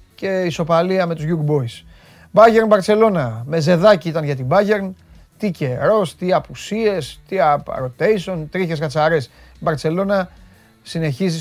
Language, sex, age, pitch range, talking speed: Greek, male, 30-49, 135-175 Hz, 125 wpm